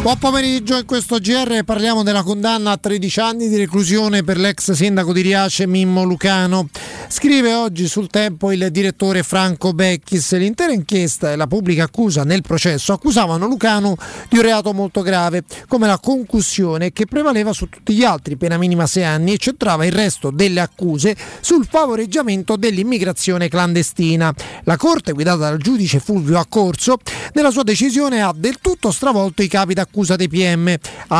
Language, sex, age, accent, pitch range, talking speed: Italian, male, 30-49, native, 180-220 Hz, 165 wpm